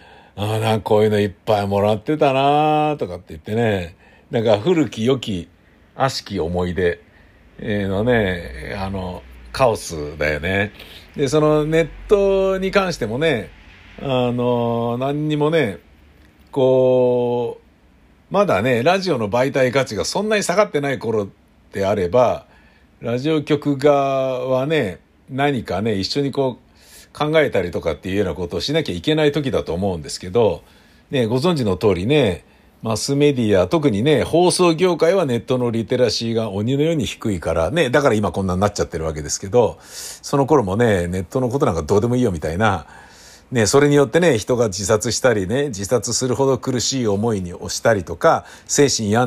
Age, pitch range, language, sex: 50-69, 100-145 Hz, Japanese, male